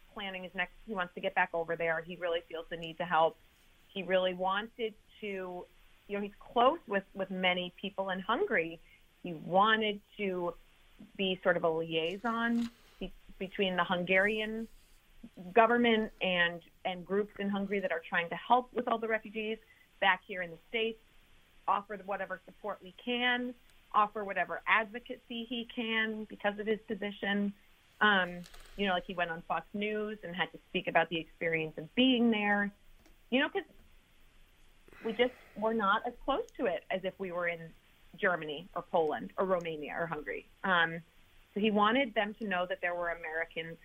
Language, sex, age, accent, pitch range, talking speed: English, female, 30-49, American, 170-220 Hz, 175 wpm